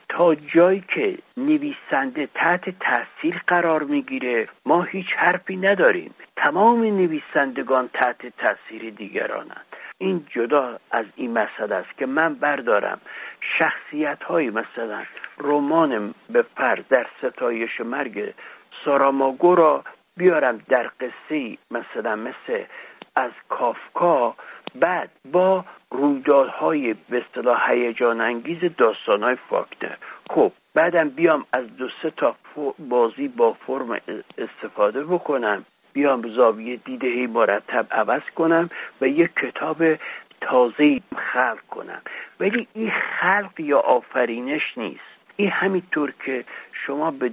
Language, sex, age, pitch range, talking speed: Persian, male, 60-79, 135-220 Hz, 110 wpm